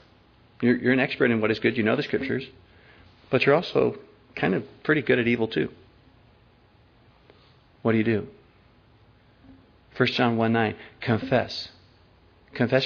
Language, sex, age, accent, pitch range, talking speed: English, male, 40-59, American, 110-130 Hz, 150 wpm